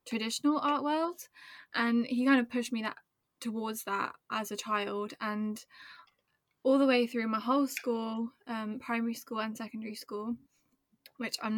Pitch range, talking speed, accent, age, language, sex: 220-245 Hz, 160 wpm, British, 20-39, English, female